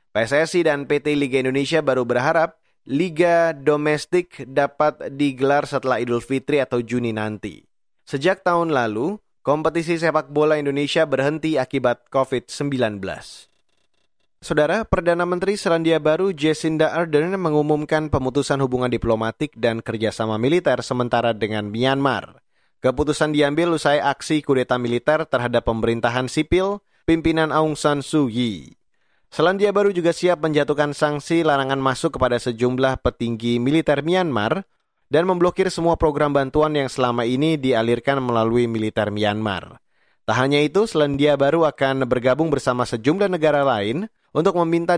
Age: 20-39